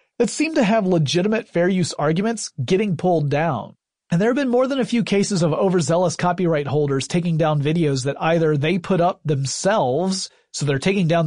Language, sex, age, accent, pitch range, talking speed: English, male, 30-49, American, 145-195 Hz, 195 wpm